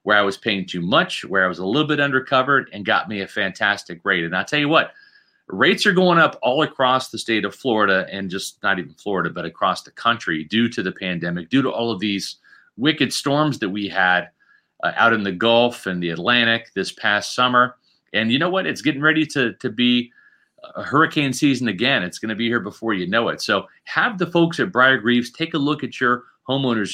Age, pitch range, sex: 40-59, 100-140 Hz, male